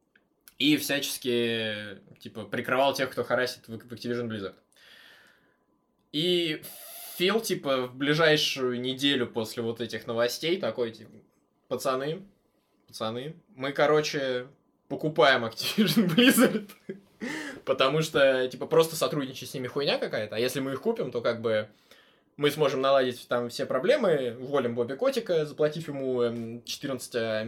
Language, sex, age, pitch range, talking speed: Russian, male, 20-39, 115-155 Hz, 125 wpm